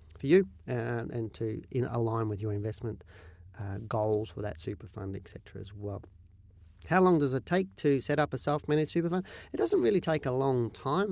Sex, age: male, 40-59